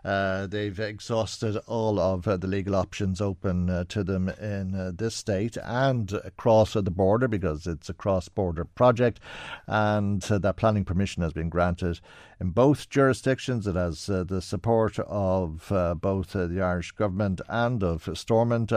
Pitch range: 90-115 Hz